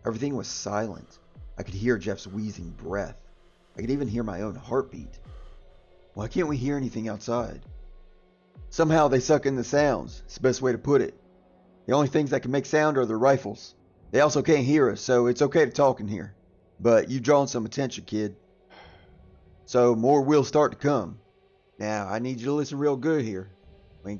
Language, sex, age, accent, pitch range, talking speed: English, male, 30-49, American, 100-140 Hz, 200 wpm